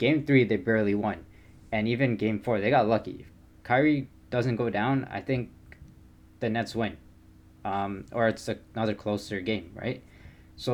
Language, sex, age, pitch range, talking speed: English, male, 20-39, 95-115 Hz, 175 wpm